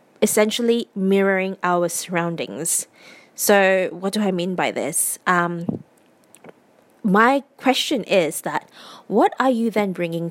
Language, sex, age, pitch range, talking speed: English, female, 20-39, 190-265 Hz, 120 wpm